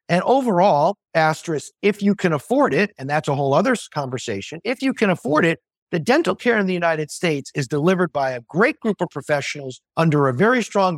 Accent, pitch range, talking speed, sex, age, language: American, 150-200 Hz, 210 wpm, male, 50-69, English